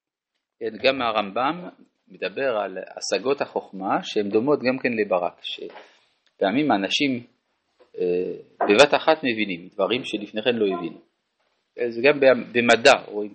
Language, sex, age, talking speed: Hebrew, male, 40-59, 115 wpm